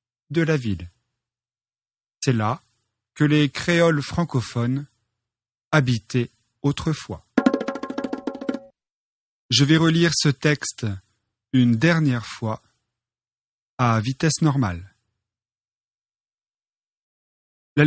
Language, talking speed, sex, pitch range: French, 75 wpm, male, 115-155 Hz